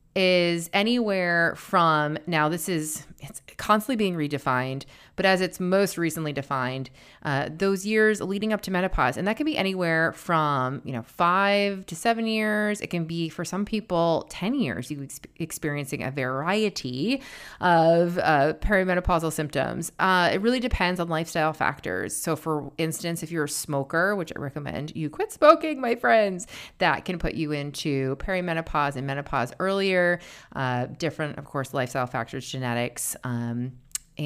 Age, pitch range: 30-49, 140-190 Hz